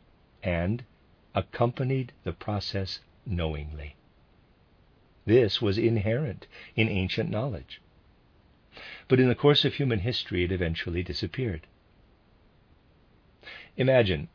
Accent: American